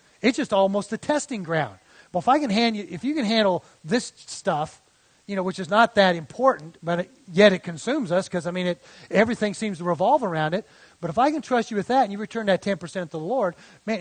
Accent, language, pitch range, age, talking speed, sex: American, English, 175-220 Hz, 40-59, 250 wpm, male